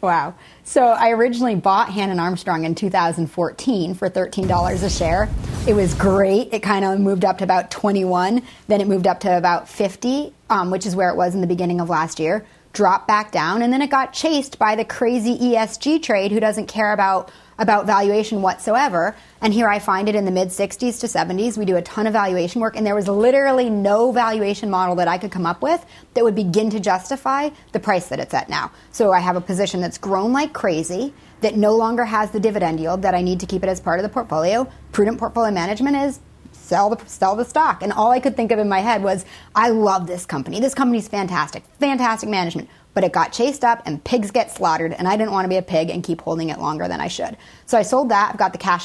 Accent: American